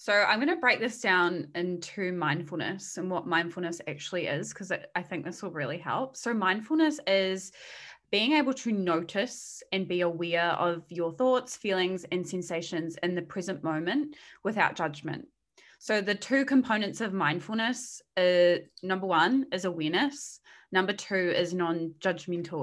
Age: 20-39